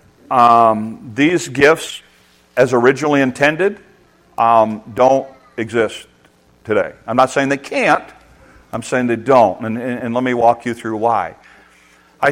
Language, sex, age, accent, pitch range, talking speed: English, male, 50-69, American, 115-145 Hz, 135 wpm